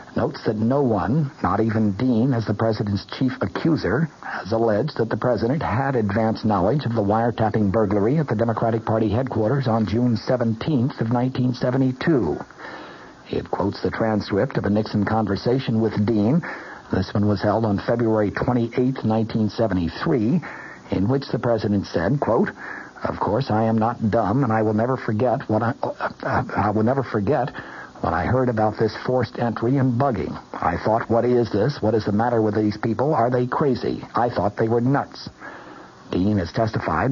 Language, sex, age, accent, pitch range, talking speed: English, male, 60-79, American, 105-125 Hz, 175 wpm